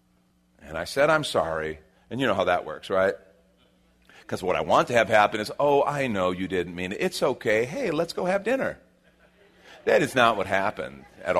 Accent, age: American, 40-59